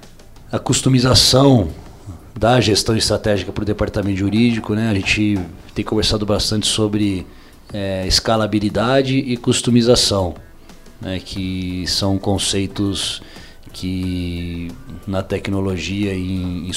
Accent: Brazilian